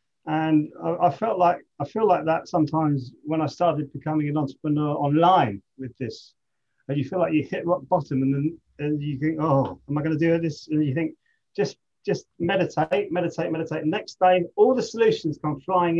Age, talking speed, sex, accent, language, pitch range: 30-49, 205 wpm, male, British, English, 135-160 Hz